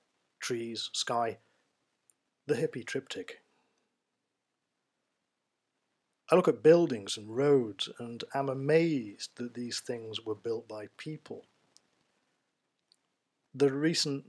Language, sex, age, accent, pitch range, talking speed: English, male, 50-69, British, 115-140 Hz, 95 wpm